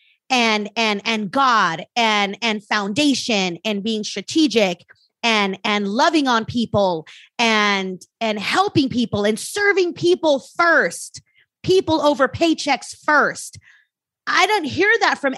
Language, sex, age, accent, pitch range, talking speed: English, female, 30-49, American, 220-295 Hz, 125 wpm